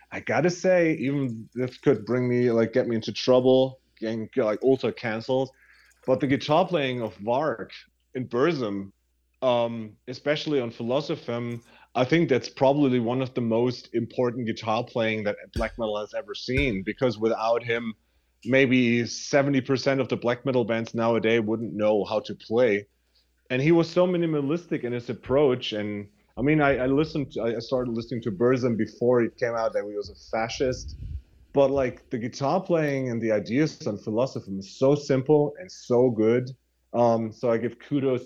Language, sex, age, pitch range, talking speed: English, male, 30-49, 110-135 Hz, 175 wpm